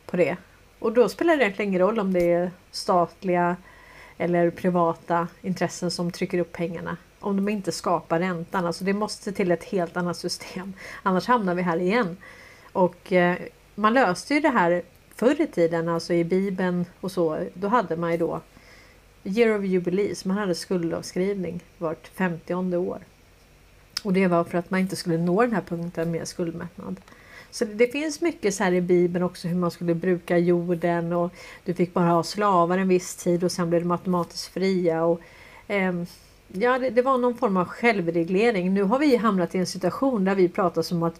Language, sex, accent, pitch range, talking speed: Swedish, female, native, 170-205 Hz, 190 wpm